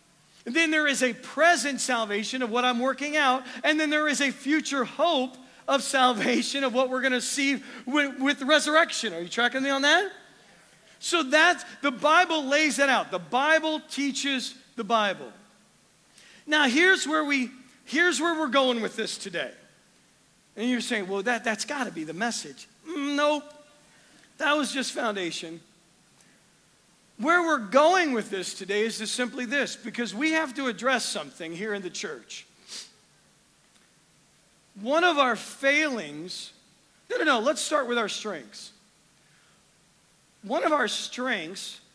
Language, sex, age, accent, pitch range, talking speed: English, male, 40-59, American, 225-295 Hz, 155 wpm